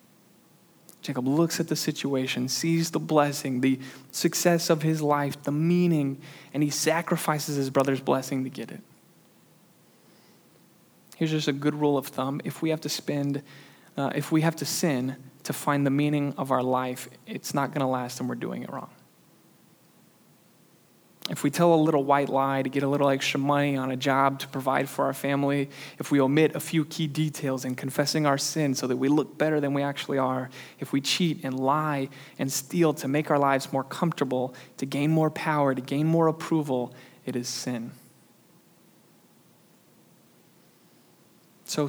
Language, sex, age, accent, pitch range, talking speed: English, male, 20-39, American, 135-155 Hz, 180 wpm